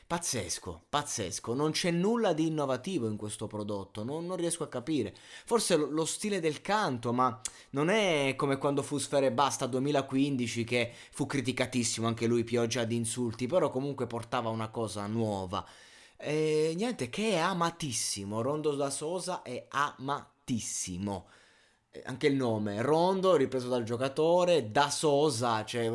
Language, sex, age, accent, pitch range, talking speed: Italian, male, 20-39, native, 105-135 Hz, 145 wpm